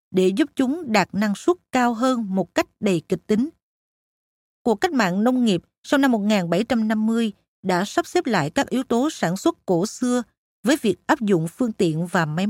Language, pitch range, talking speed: Vietnamese, 190-255 Hz, 190 wpm